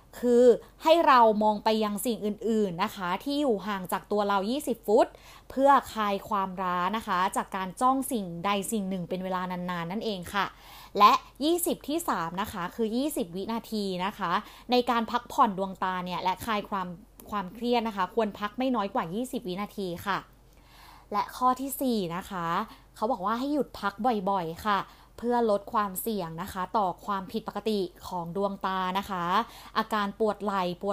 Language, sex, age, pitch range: Thai, female, 20-39, 185-235 Hz